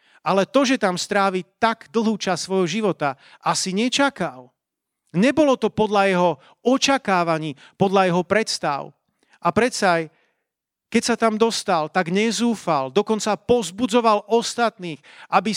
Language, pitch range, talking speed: Slovak, 170-230 Hz, 125 wpm